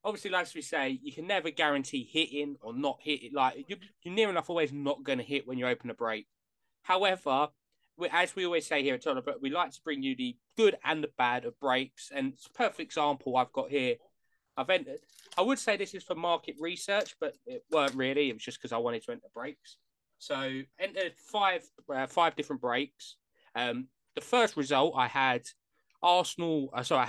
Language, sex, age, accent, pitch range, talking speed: English, male, 20-39, British, 130-185 Hz, 215 wpm